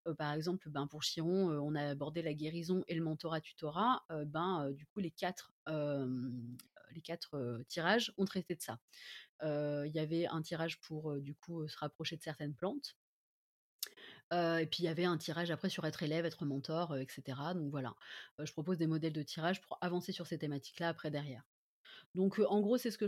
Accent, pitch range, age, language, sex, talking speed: French, 155-210 Hz, 30-49, French, female, 200 wpm